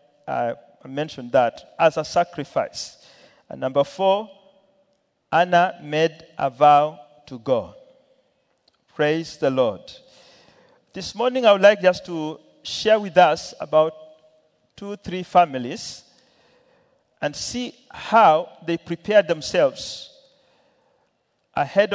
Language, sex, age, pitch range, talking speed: English, male, 50-69, 150-195 Hz, 105 wpm